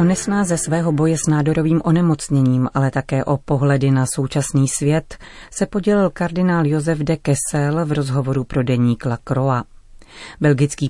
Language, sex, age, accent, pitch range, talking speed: Czech, female, 30-49, native, 135-160 Hz, 150 wpm